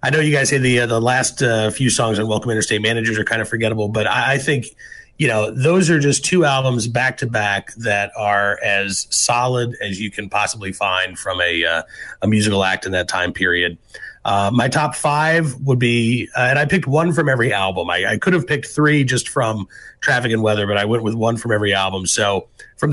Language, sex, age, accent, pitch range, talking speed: English, male, 30-49, American, 105-140 Hz, 230 wpm